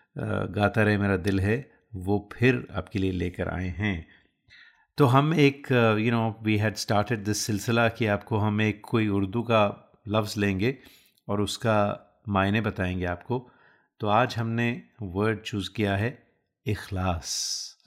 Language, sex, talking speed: Hindi, male, 150 wpm